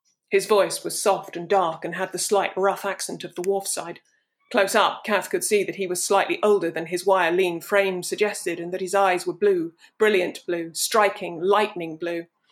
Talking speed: 200 wpm